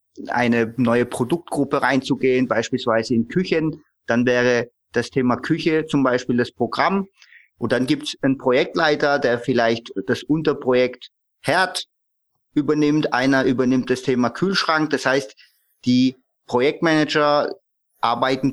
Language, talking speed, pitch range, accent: German, 125 wpm, 125-155 Hz, German